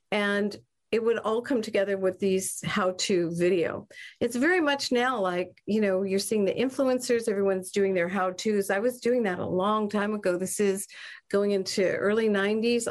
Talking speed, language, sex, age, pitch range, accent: 180 wpm, English, female, 50-69, 185-230 Hz, American